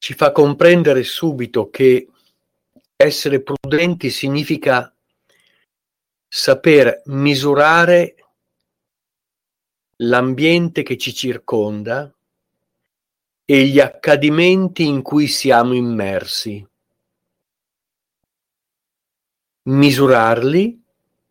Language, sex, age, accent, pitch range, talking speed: Italian, male, 50-69, native, 110-145 Hz, 60 wpm